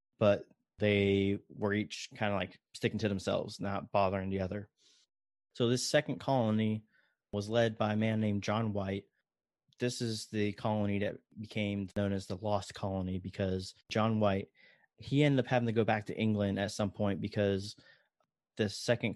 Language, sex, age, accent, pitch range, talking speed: English, male, 20-39, American, 100-110 Hz, 170 wpm